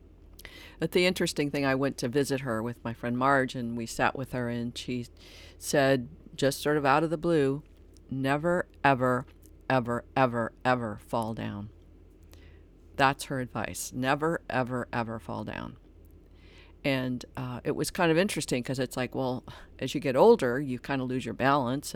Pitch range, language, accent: 110-135 Hz, English, American